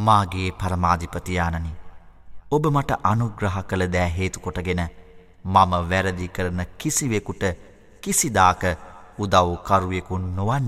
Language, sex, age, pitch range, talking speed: Arabic, male, 30-49, 90-105 Hz, 110 wpm